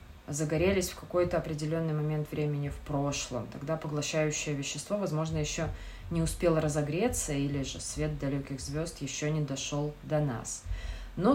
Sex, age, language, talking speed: female, 20-39, Russian, 145 wpm